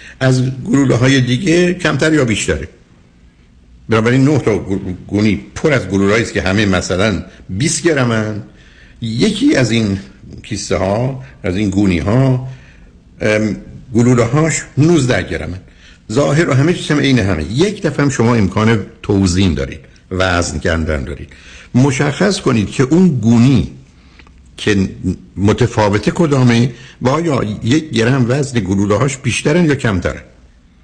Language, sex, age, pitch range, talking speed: Persian, male, 60-79, 85-130 Hz, 135 wpm